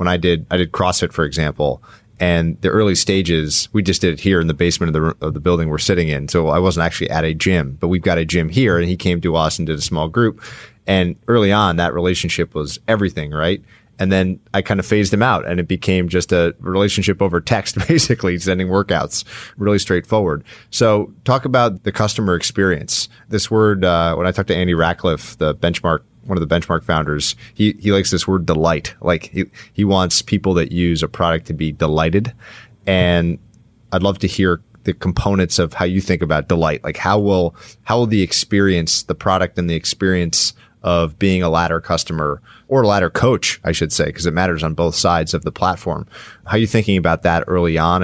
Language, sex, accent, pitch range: English, male, American, 85-100 Hz